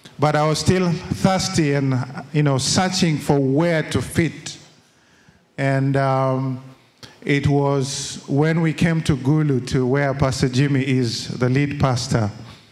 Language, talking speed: English, 140 wpm